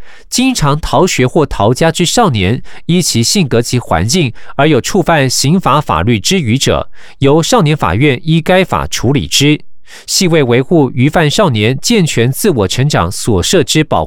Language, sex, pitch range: Chinese, male, 125-180 Hz